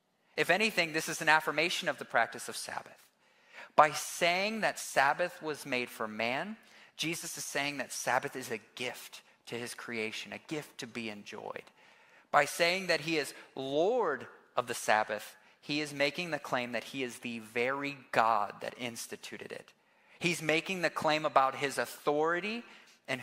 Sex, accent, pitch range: male, American, 125-170 Hz